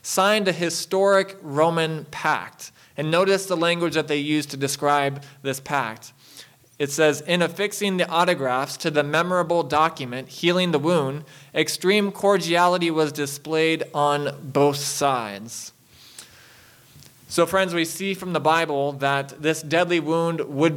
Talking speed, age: 140 wpm, 20-39